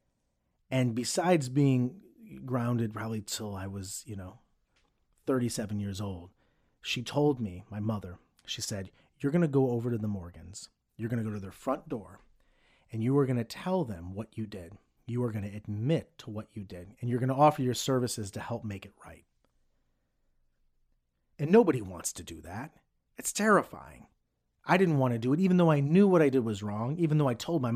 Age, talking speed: 30-49, 205 wpm